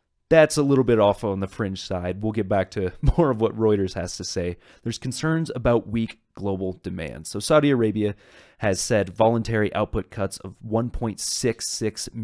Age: 30-49